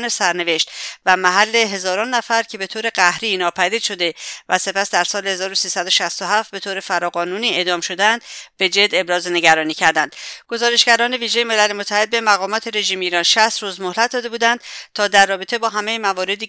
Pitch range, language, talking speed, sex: 180-220 Hz, English, 160 wpm, female